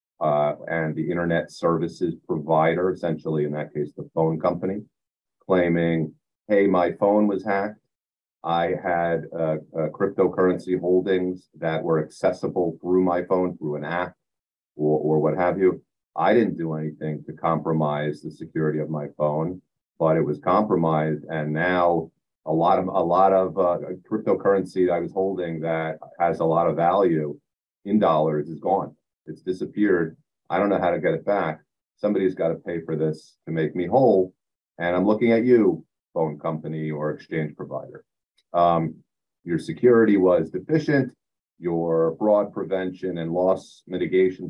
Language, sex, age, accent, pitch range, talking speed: English, male, 40-59, American, 80-95 Hz, 160 wpm